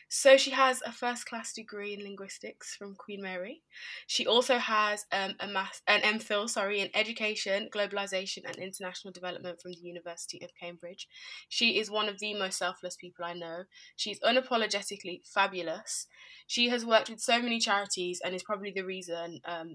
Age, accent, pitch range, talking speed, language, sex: 20-39, British, 175-205 Hz, 175 wpm, English, female